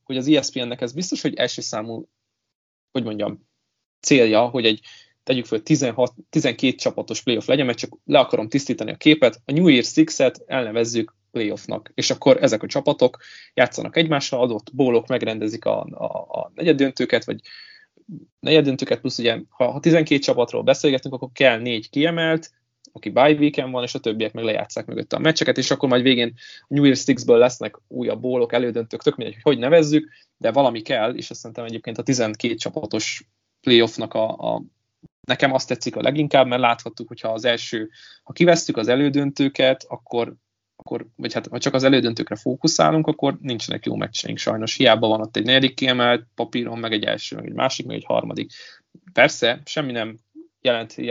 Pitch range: 115-145 Hz